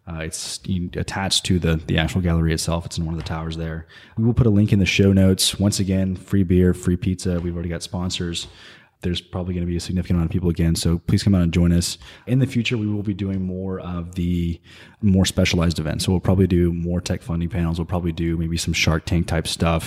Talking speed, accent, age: 250 wpm, American, 20-39